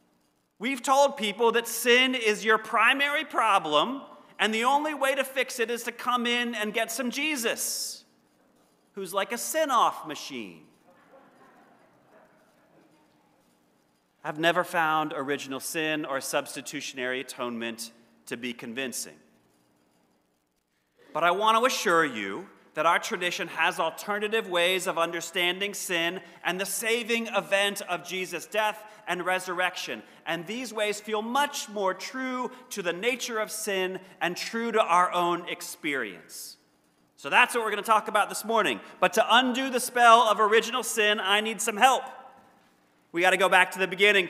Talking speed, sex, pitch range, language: 150 wpm, male, 155-230 Hz, English